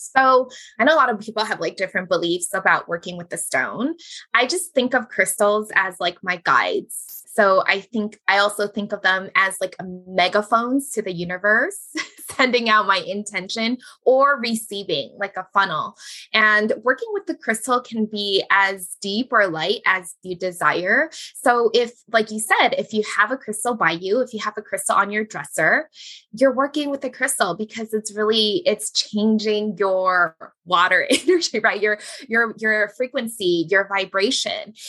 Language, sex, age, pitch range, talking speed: English, female, 20-39, 195-255 Hz, 175 wpm